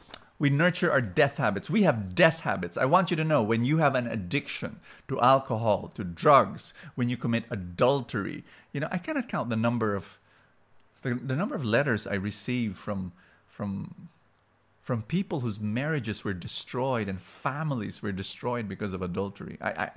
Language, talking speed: English, 175 wpm